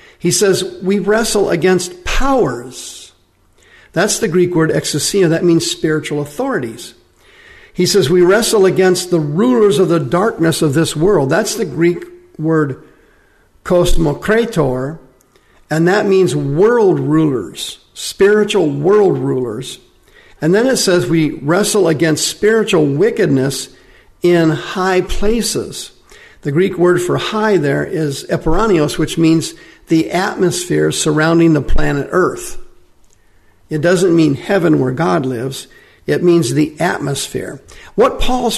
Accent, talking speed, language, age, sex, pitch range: American, 130 wpm, English, 50-69, male, 155-205 Hz